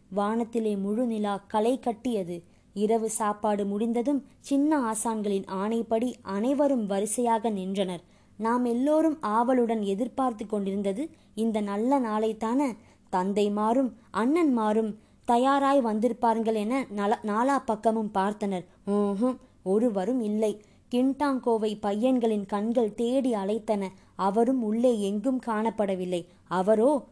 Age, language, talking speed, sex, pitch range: 20-39, Tamil, 95 wpm, male, 210-250 Hz